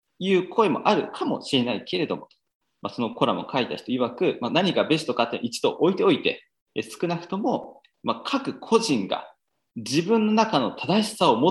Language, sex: Japanese, male